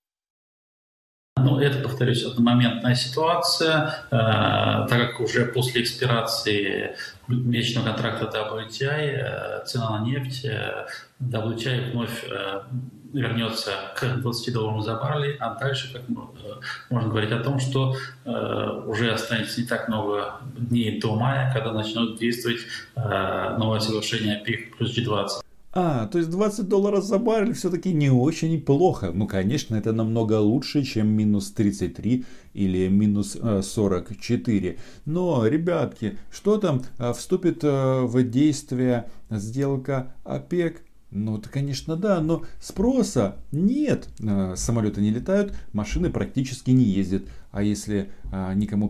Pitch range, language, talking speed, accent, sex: 105-140 Hz, Russian, 125 wpm, native, male